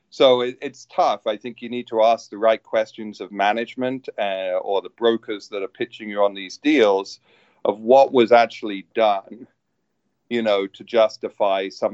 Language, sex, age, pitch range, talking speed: English, male, 40-59, 95-120 Hz, 175 wpm